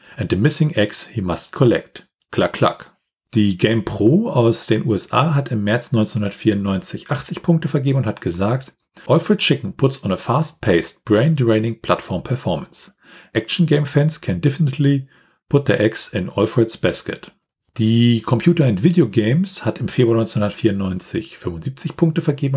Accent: German